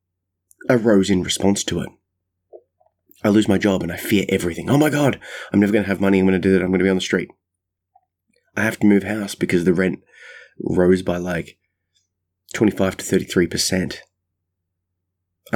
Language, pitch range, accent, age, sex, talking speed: English, 90-100 Hz, Australian, 20-39, male, 185 wpm